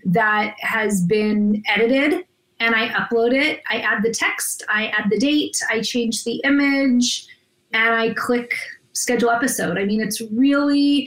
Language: English